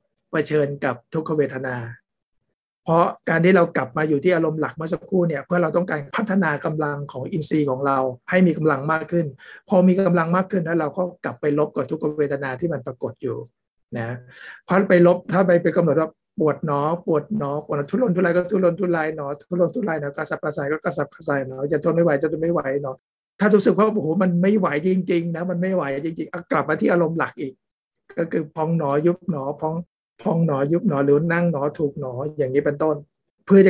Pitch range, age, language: 145-175 Hz, 60-79, Thai